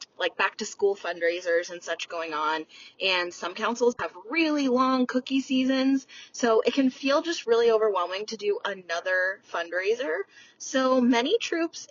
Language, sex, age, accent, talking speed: English, female, 20-39, American, 155 wpm